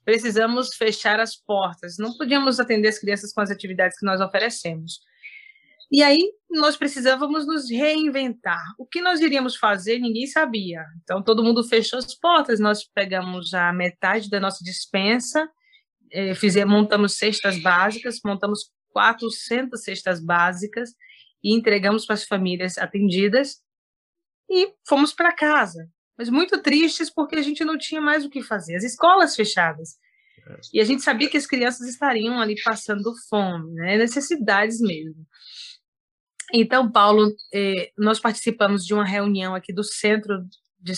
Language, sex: Portuguese, female